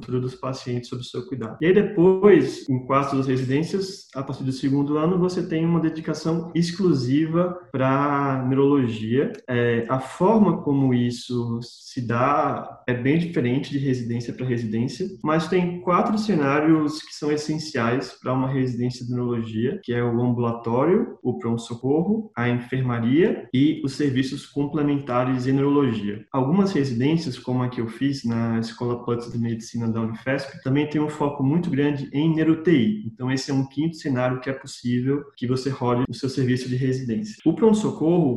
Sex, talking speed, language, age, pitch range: male, 170 wpm, Portuguese, 20-39, 120-145 Hz